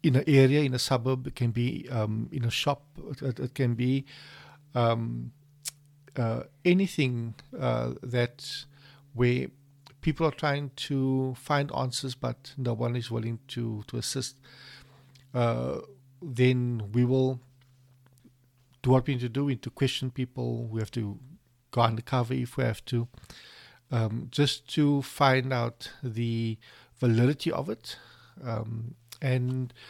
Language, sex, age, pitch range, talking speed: English, male, 50-69, 120-140 Hz, 145 wpm